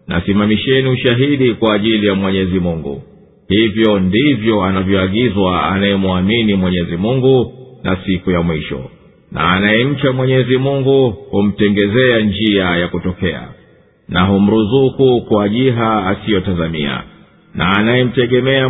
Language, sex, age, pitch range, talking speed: Swahili, male, 50-69, 95-125 Hz, 105 wpm